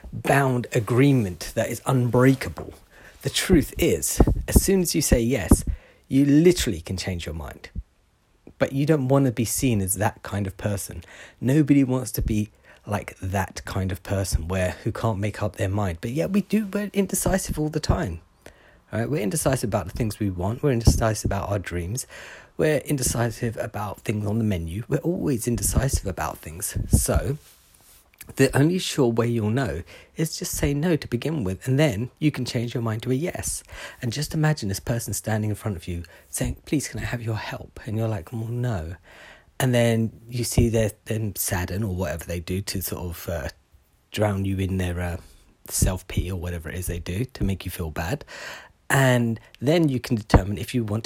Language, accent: English, British